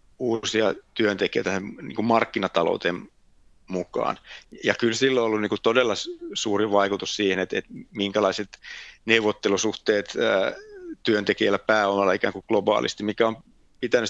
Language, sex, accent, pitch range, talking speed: Finnish, male, native, 105-140 Hz, 115 wpm